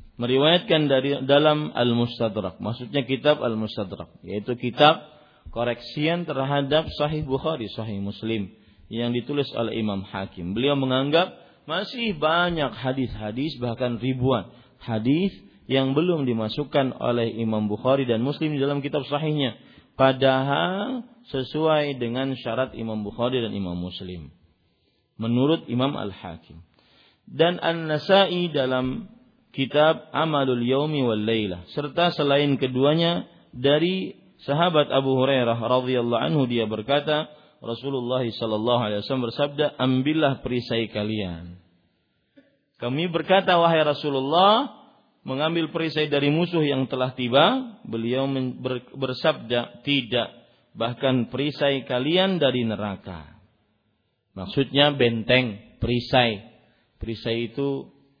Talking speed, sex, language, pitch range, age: 105 wpm, male, Malay, 115-150 Hz, 40-59